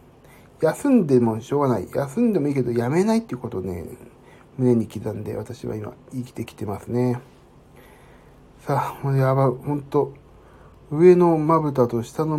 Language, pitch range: Japanese, 110-145 Hz